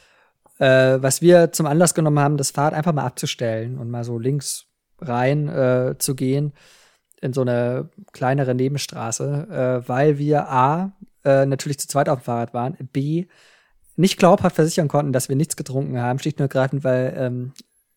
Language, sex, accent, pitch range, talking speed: German, male, German, 125-150 Hz, 175 wpm